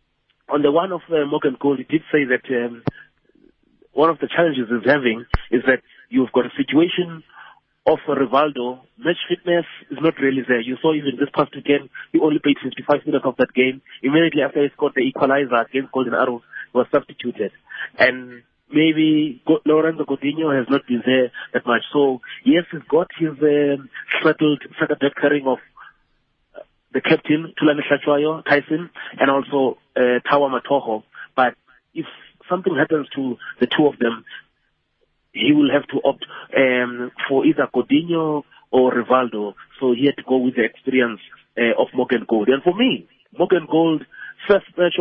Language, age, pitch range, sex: English, 30-49, 125-155 Hz, male